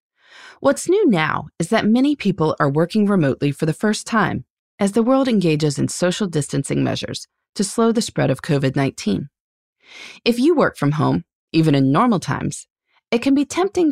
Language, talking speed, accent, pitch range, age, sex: English, 175 wpm, American, 155-240 Hz, 30-49, female